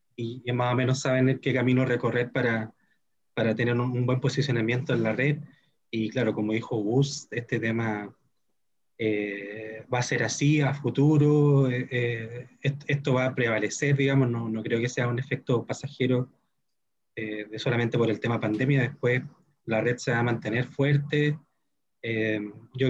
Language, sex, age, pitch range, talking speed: Spanish, male, 20-39, 120-145 Hz, 165 wpm